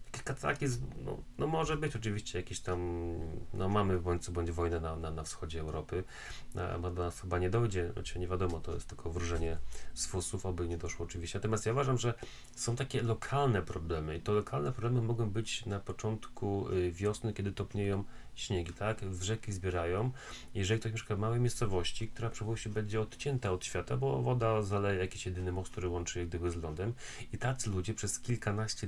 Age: 30-49